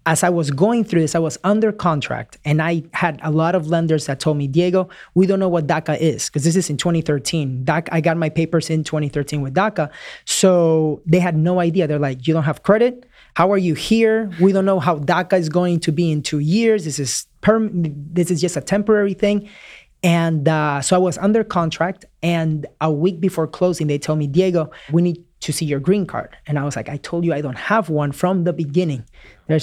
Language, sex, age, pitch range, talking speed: English, male, 30-49, 145-175 Hz, 235 wpm